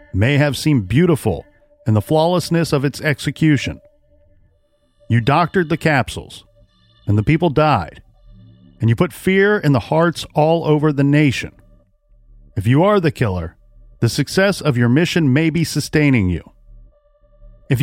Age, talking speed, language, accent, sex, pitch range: 40-59, 150 wpm, English, American, male, 115-165 Hz